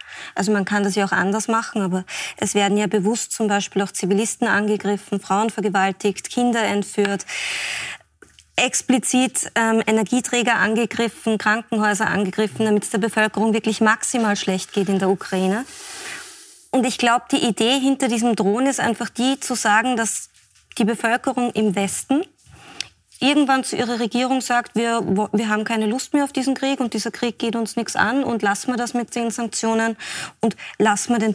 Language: German